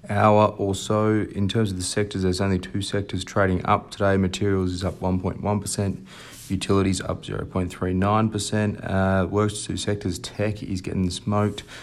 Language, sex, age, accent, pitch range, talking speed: English, male, 30-49, Australian, 95-105 Hz, 160 wpm